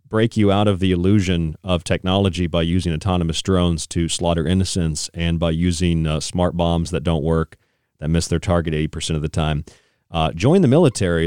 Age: 40-59